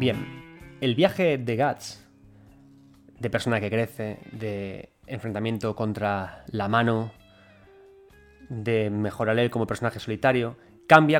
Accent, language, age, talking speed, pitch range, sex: Spanish, Spanish, 20-39, 115 wpm, 115-145 Hz, male